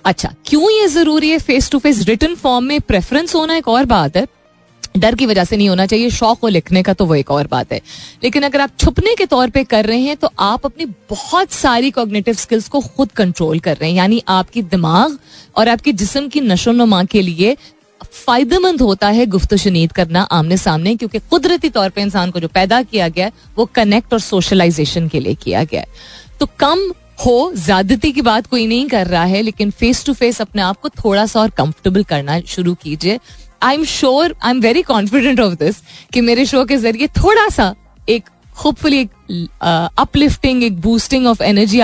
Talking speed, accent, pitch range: 205 wpm, native, 185-255 Hz